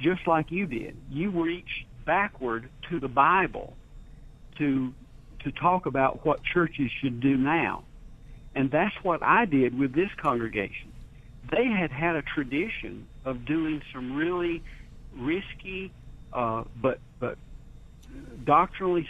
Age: 60-79